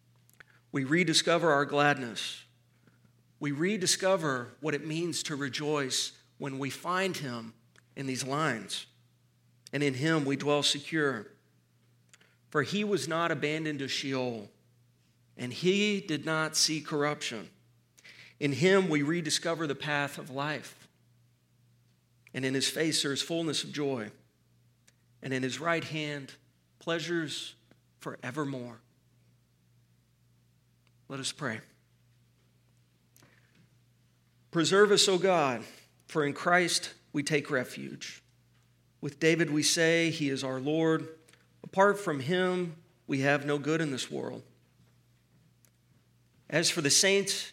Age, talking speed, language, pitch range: 40-59, 120 wpm, English, 120-165 Hz